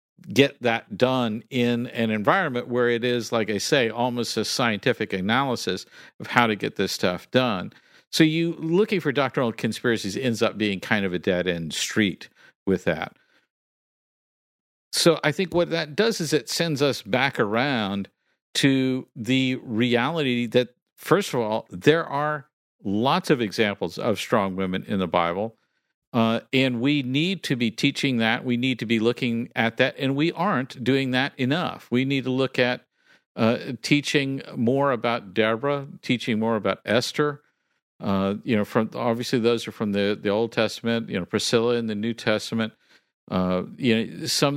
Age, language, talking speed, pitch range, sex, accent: 50-69, English, 170 wpm, 115-140 Hz, male, American